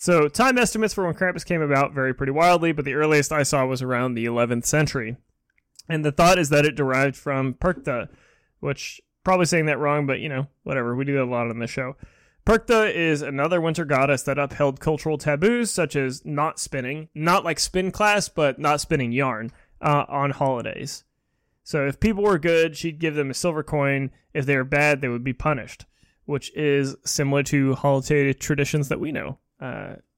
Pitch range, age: 135-160 Hz, 20-39